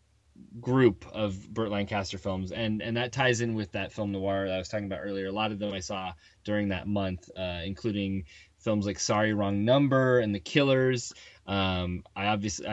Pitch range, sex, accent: 95-120 Hz, male, American